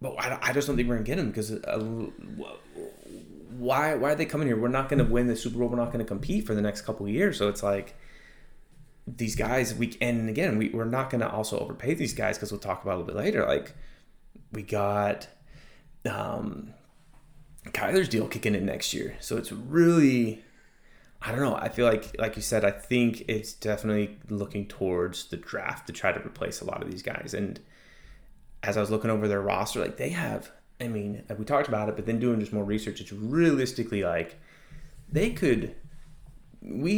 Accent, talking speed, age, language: American, 215 wpm, 20-39, English